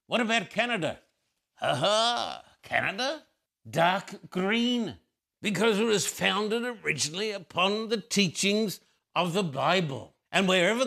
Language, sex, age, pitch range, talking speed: English, male, 60-79, 160-210 Hz, 110 wpm